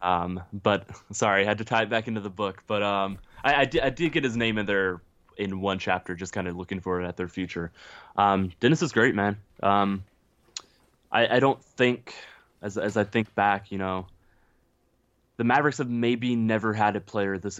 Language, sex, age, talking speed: English, male, 20-39, 215 wpm